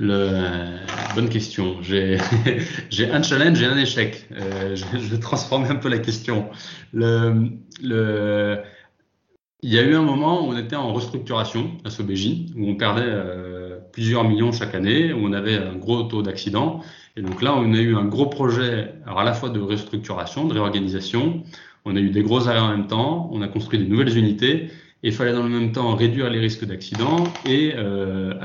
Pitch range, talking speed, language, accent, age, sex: 105-135 Hz, 200 wpm, French, French, 30-49, male